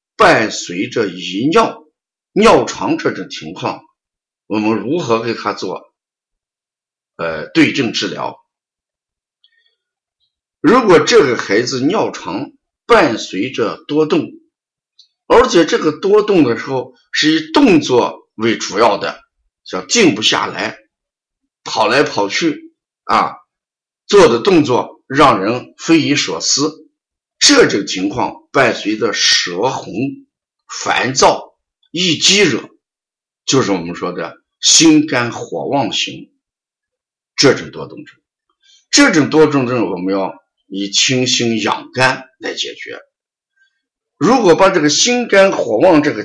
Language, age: Chinese, 50-69